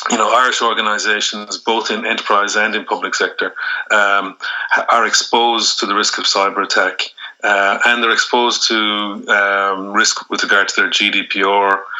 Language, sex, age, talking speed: English, male, 30-49, 160 wpm